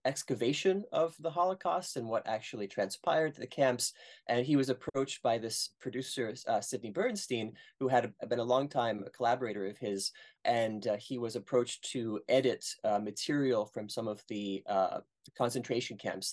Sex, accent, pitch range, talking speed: male, American, 105-135 Hz, 160 wpm